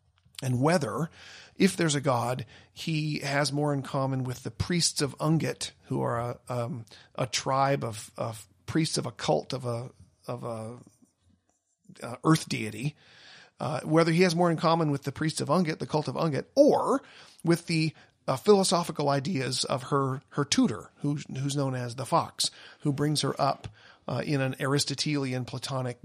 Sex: male